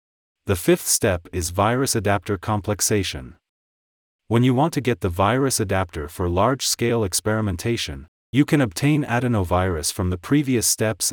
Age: 40-59